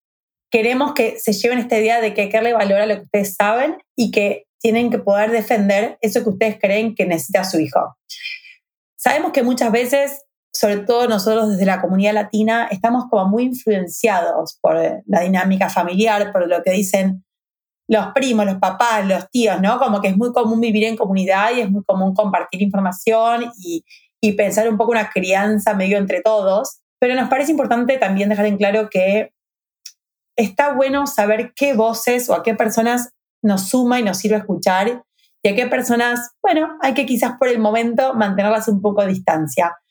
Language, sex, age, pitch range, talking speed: Spanish, female, 30-49, 200-240 Hz, 185 wpm